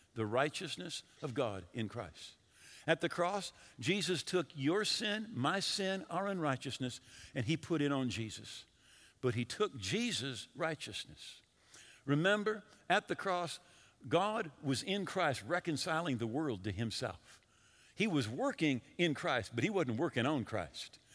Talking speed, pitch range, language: 150 wpm, 120-190 Hz, English